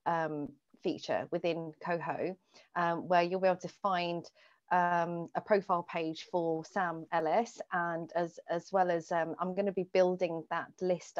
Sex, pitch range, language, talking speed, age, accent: female, 165-210 Hz, English, 165 wpm, 40-59, British